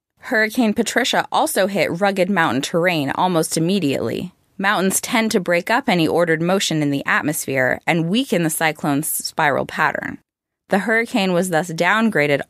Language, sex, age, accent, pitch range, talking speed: English, female, 20-39, American, 160-210 Hz, 150 wpm